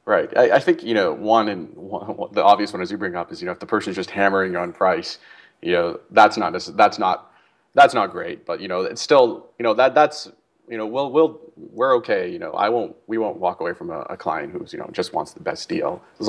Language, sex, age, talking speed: English, male, 30-49, 275 wpm